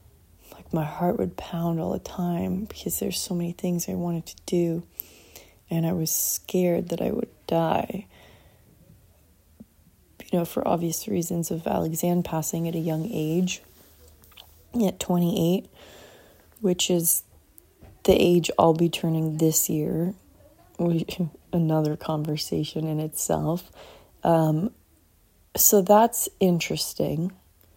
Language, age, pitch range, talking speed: English, 20-39, 160-205 Hz, 120 wpm